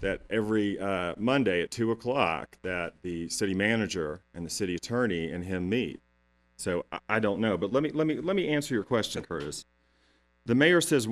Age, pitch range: 40-59, 90-130 Hz